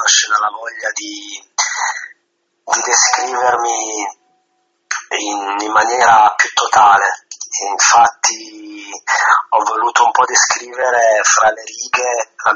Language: Italian